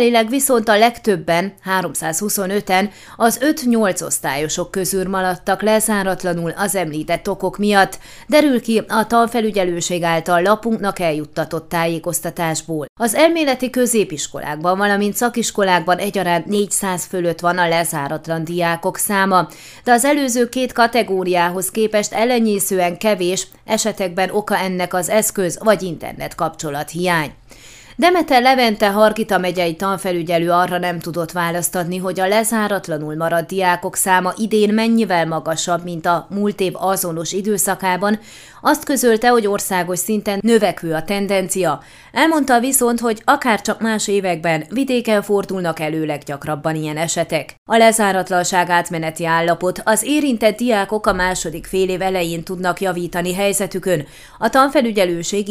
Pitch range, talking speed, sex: 170-215 Hz, 125 wpm, female